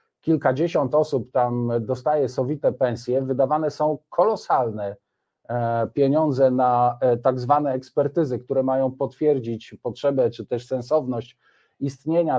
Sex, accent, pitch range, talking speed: male, native, 120-145 Hz, 105 wpm